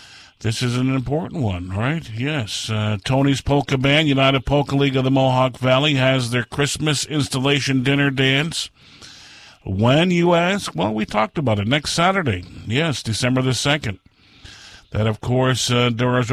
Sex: male